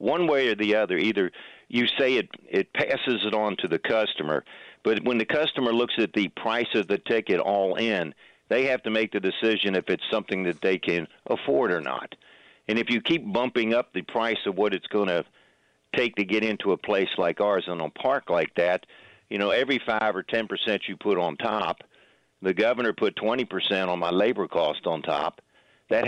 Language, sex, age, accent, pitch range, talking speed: English, male, 50-69, American, 90-115 Hz, 210 wpm